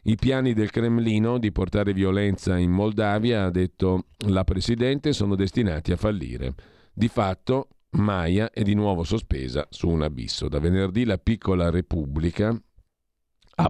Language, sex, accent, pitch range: Italian, male, native, 85-105 Hz